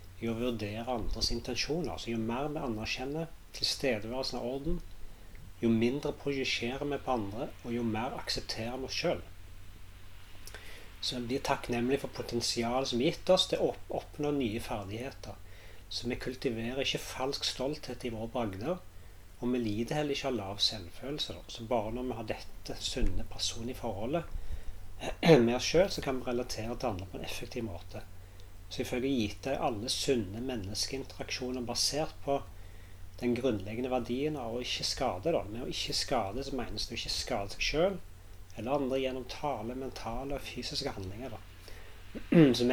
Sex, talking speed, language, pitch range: male, 155 wpm, English, 95-130 Hz